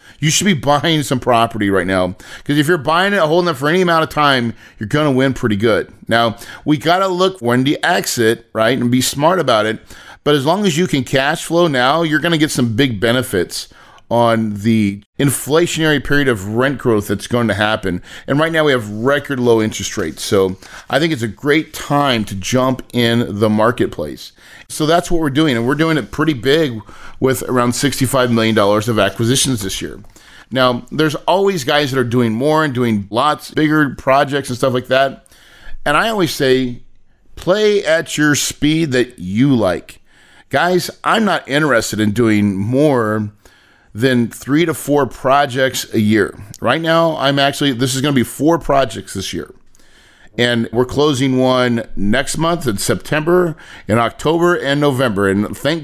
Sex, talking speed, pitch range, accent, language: male, 190 wpm, 115-150 Hz, American, English